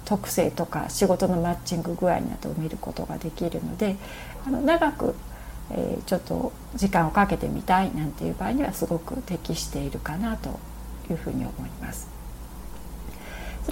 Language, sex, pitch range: Japanese, female, 170-240 Hz